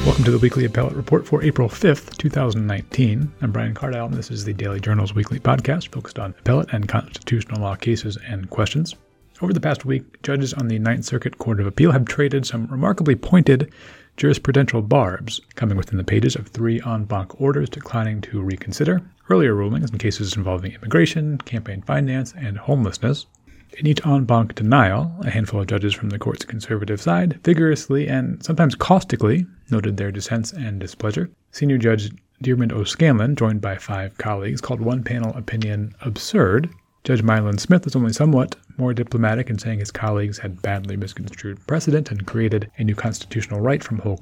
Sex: male